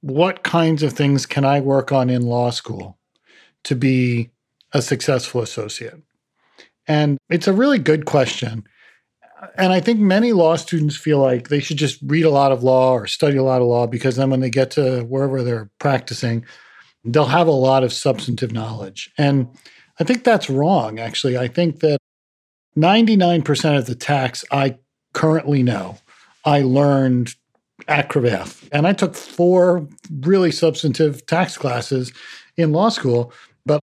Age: 40-59